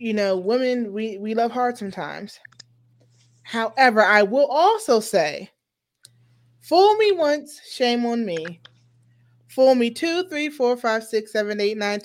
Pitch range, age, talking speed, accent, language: 190-290 Hz, 20-39, 145 wpm, American, English